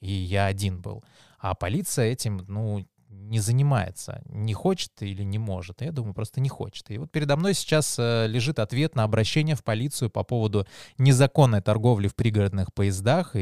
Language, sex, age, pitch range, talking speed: Russian, male, 20-39, 100-125 Hz, 170 wpm